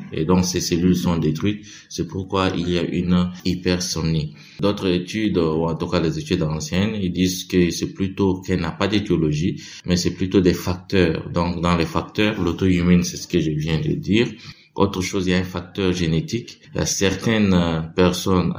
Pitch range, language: 80-95 Hz, French